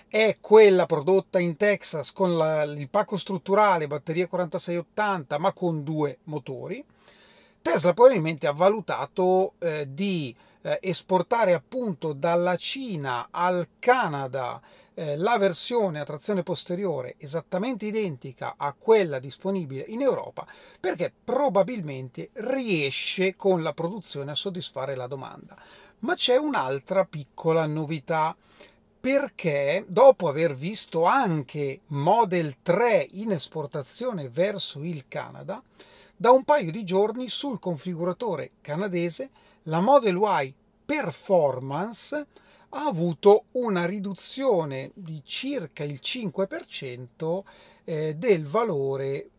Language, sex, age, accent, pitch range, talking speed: Italian, male, 40-59, native, 150-210 Hz, 105 wpm